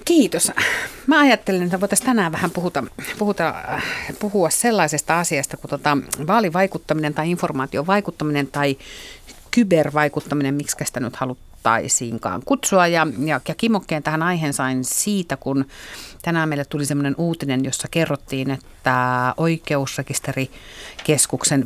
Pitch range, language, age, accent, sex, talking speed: 135-170 Hz, Finnish, 50-69, native, female, 115 wpm